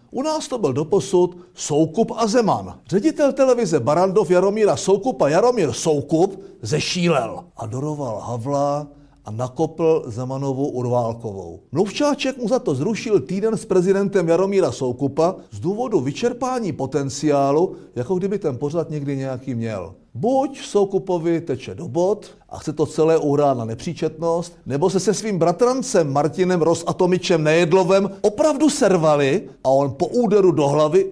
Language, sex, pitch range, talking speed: Czech, male, 135-190 Hz, 135 wpm